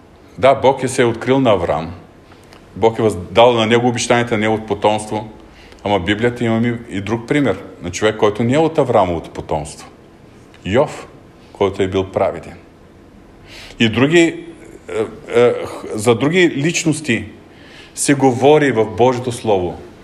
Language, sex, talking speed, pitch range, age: Bulgarian, male, 140 wpm, 110-140 Hz, 40-59